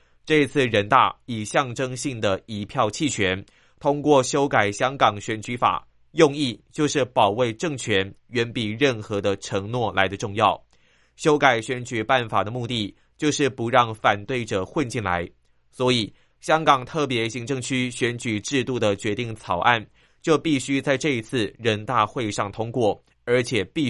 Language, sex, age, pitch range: Chinese, male, 30-49, 105-140 Hz